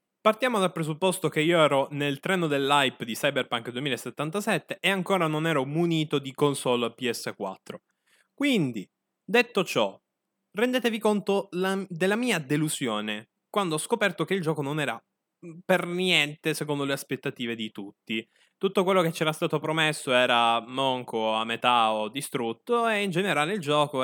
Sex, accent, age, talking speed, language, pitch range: male, native, 10-29, 150 wpm, Italian, 120-170 Hz